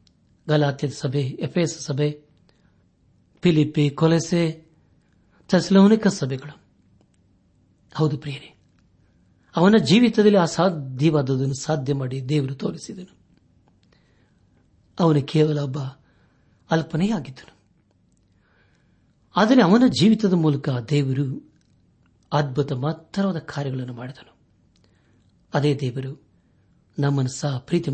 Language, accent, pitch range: Kannada, native, 120-155 Hz